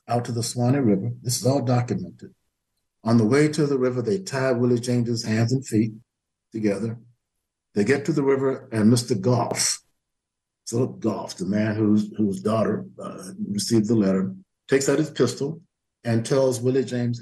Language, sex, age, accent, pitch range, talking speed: English, male, 60-79, American, 105-130 Hz, 175 wpm